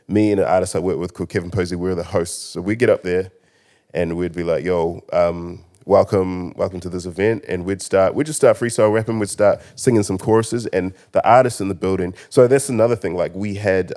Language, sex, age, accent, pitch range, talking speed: English, male, 20-39, Australian, 85-105 Hz, 240 wpm